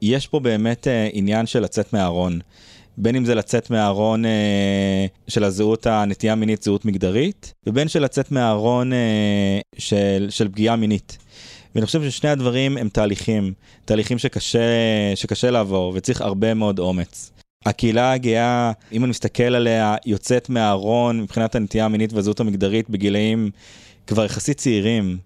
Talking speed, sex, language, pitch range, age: 145 wpm, male, Hebrew, 100-115 Hz, 20-39